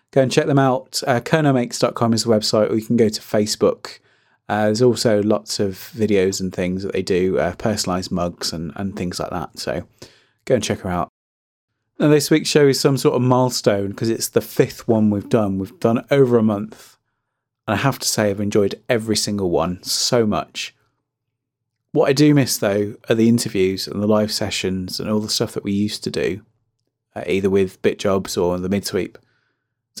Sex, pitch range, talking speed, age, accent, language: male, 100-125 Hz, 210 wpm, 30-49, British, English